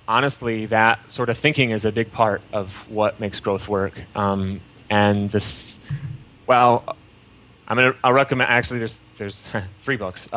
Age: 30-49